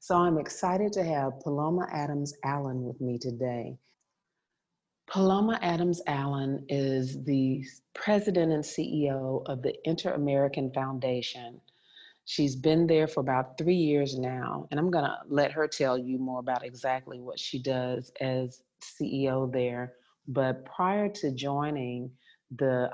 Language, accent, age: English, American, 40-59